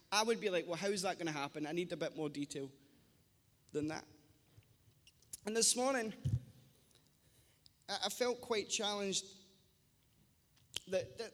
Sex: male